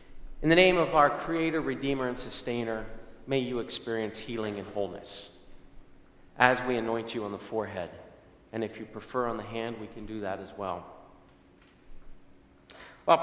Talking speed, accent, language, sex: 165 wpm, American, English, male